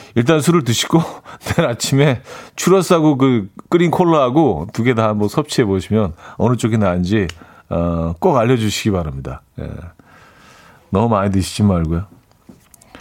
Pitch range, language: 105-160 Hz, Korean